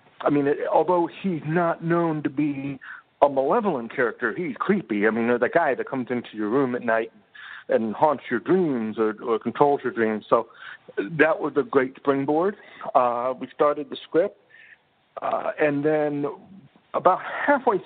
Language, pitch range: English, 125-170 Hz